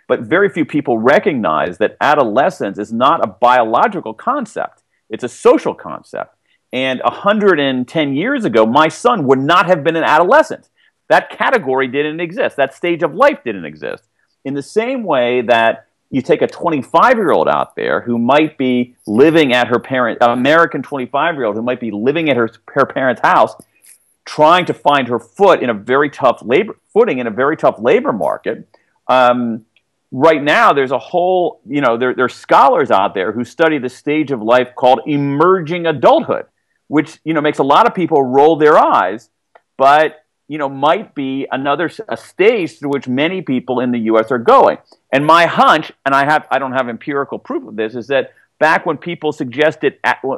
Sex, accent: male, American